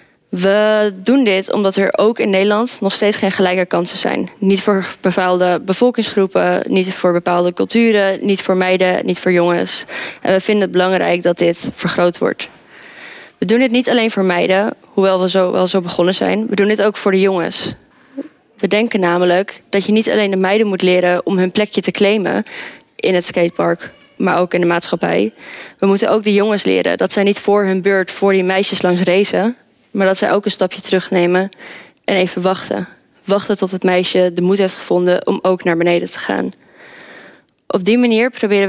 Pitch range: 185-205 Hz